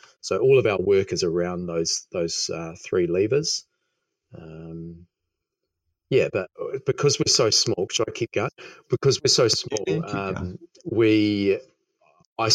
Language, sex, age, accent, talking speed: English, male, 40-59, Australian, 145 wpm